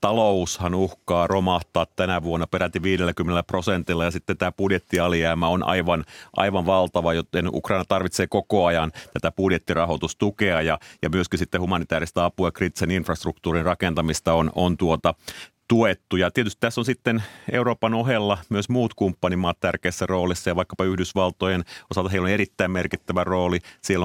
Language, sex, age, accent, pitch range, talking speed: Finnish, male, 30-49, native, 85-95 Hz, 140 wpm